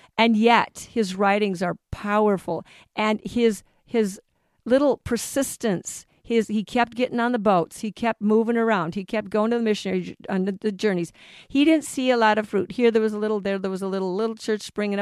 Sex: female